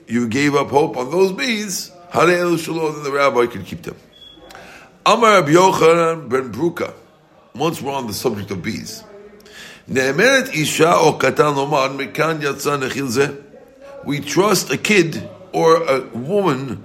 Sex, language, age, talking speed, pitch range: male, English, 50-69, 95 wpm, 140-190 Hz